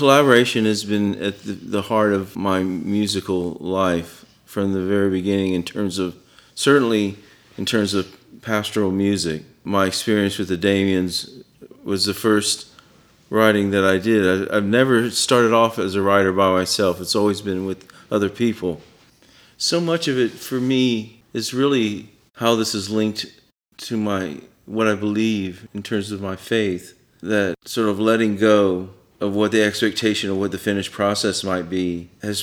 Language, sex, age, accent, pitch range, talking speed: English, male, 40-59, American, 95-110 Hz, 165 wpm